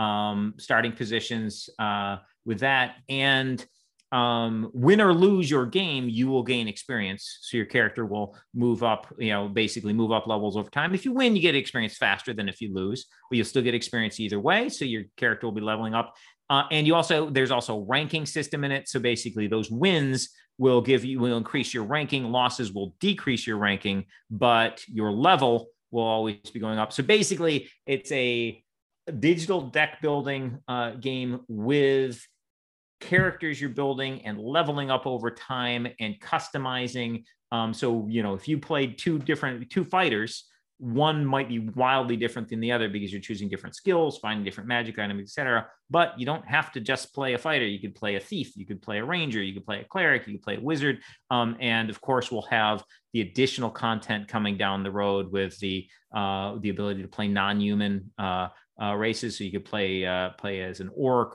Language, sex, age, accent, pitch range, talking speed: English, male, 30-49, American, 105-135 Hz, 195 wpm